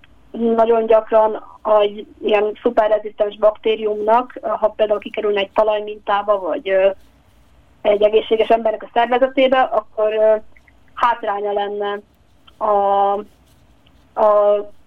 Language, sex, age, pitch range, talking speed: Hungarian, female, 20-39, 200-220 Hz, 90 wpm